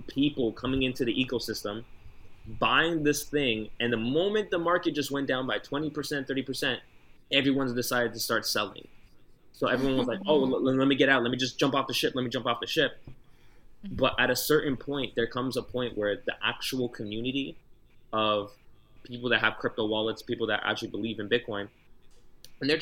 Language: English